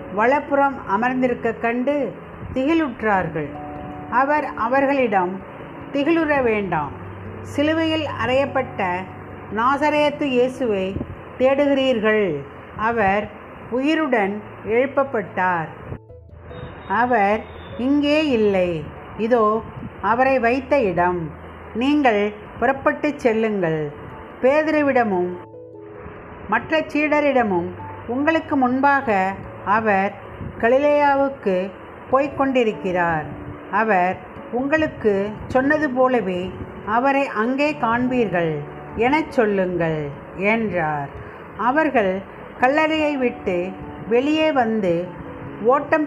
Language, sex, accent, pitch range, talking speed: Tamil, female, native, 185-275 Hz, 65 wpm